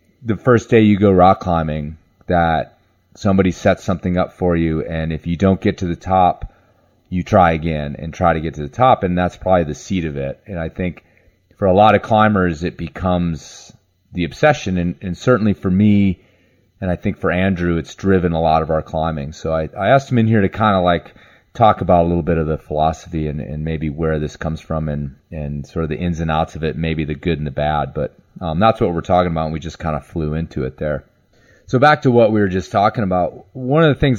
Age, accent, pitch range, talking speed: 30-49, American, 80-95 Hz, 245 wpm